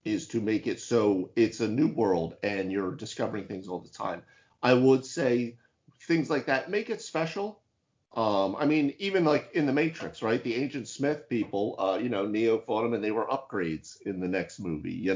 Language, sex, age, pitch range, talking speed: English, male, 40-59, 95-130 Hz, 210 wpm